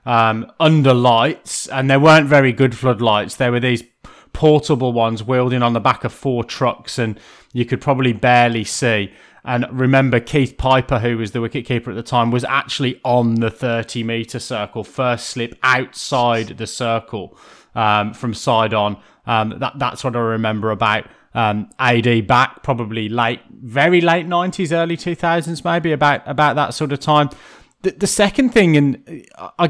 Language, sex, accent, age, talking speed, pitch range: English, male, British, 20-39, 165 wpm, 120-150 Hz